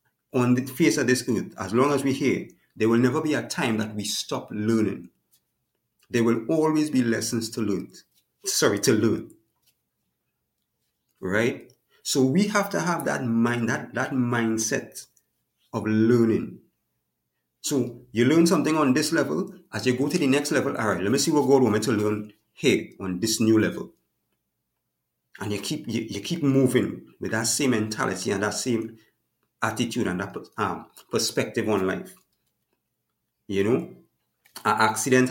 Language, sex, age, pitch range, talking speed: English, male, 50-69, 100-125 Hz, 170 wpm